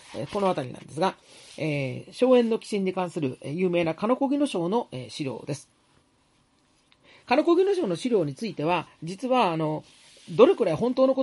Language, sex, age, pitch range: Japanese, male, 40-59, 150-225 Hz